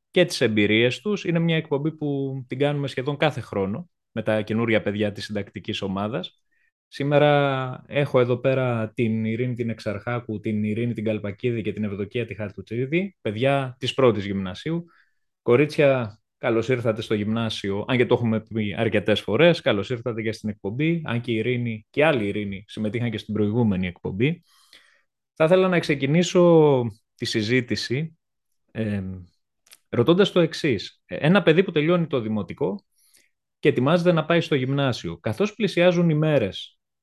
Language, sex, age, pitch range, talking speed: Greek, male, 20-39, 110-160 Hz, 155 wpm